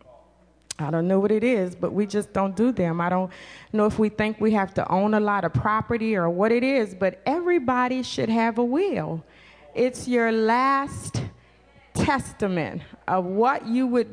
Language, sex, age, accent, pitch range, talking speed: English, female, 30-49, American, 205-255 Hz, 185 wpm